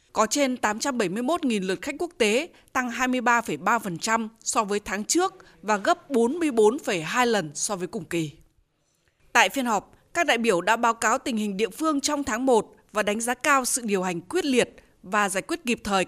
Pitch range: 205-275 Hz